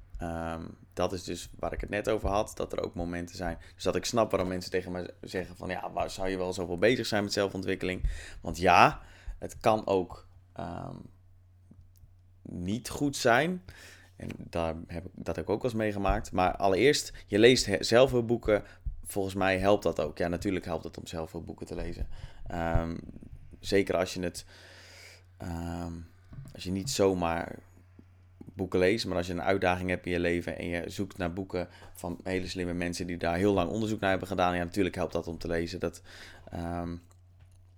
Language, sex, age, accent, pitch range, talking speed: Dutch, male, 20-39, Dutch, 85-100 Hz, 200 wpm